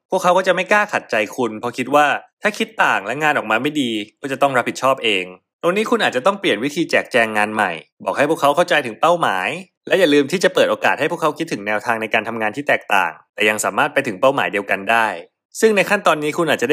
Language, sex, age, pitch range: Thai, male, 20-39, 120-170 Hz